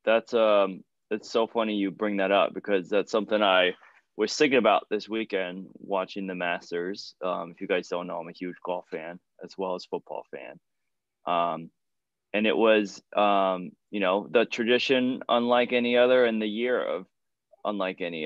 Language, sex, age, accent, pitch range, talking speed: English, male, 20-39, American, 95-120 Hz, 180 wpm